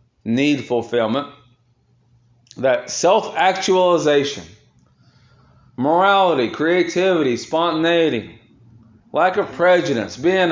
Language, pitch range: English, 110-155 Hz